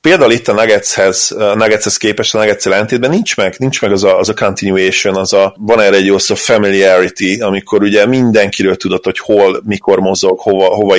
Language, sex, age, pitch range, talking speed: Hungarian, male, 30-49, 100-130 Hz, 185 wpm